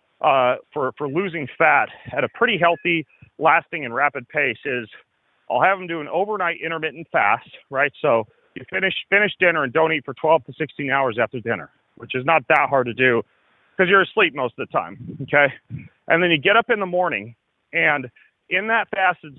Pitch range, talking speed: 135-180 Hz, 200 wpm